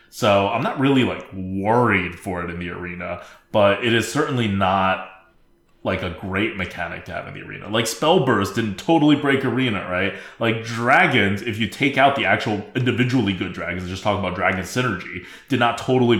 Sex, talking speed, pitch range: male, 190 wpm, 95-120 Hz